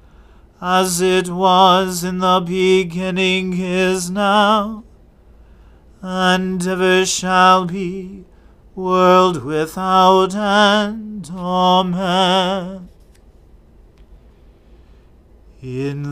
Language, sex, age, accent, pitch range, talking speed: English, male, 40-59, American, 165-190 Hz, 65 wpm